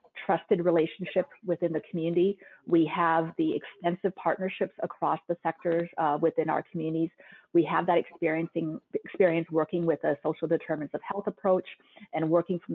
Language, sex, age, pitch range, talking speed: English, female, 30-49, 160-190 Hz, 155 wpm